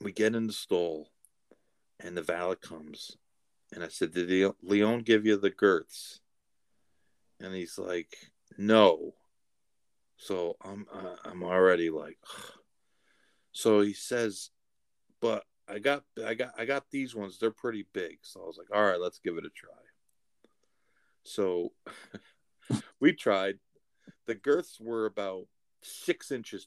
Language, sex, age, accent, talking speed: English, male, 40-59, American, 145 wpm